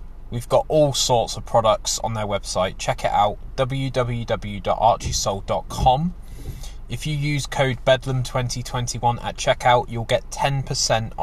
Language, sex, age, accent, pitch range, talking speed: English, male, 20-39, British, 110-135 Hz, 125 wpm